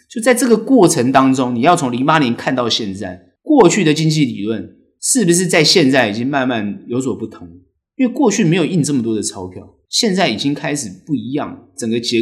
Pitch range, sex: 110-175 Hz, male